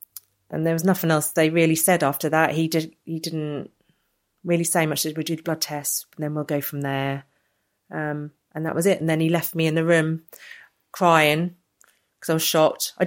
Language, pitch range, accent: English, 150-170 Hz, British